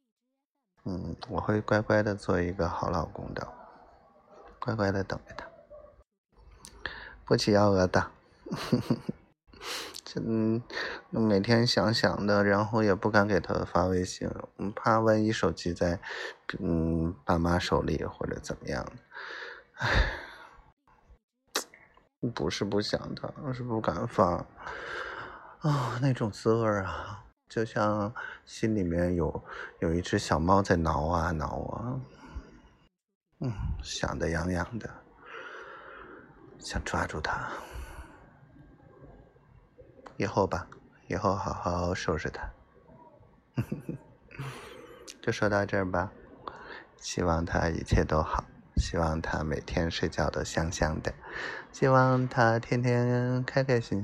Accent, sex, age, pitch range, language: native, male, 20-39, 90-125 Hz, Chinese